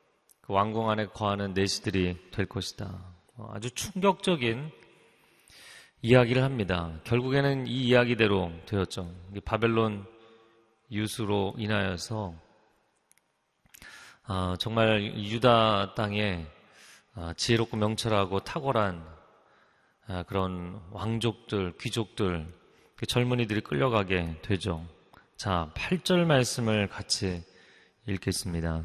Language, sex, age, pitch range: Korean, male, 30-49, 95-120 Hz